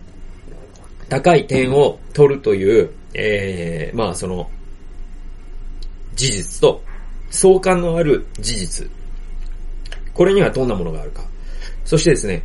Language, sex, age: Japanese, male, 30-49